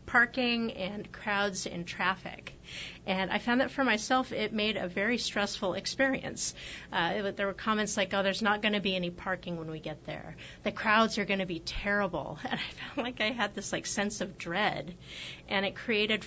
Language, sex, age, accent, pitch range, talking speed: English, female, 30-49, American, 175-210 Hz, 205 wpm